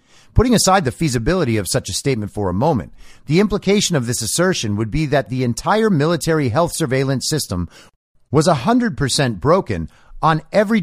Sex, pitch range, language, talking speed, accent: male, 115-165 Hz, English, 170 wpm, American